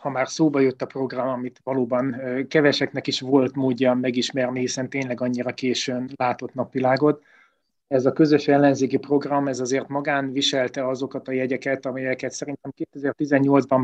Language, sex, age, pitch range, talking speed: Hungarian, male, 30-49, 130-140 Hz, 145 wpm